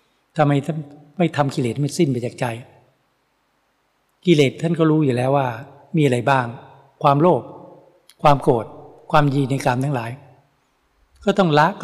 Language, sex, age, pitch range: Thai, male, 60-79, 130-155 Hz